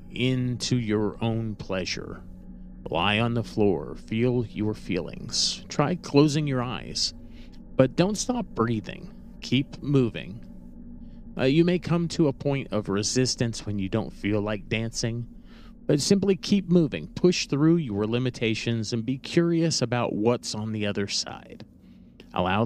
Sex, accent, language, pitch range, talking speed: male, American, English, 105-140 Hz, 145 wpm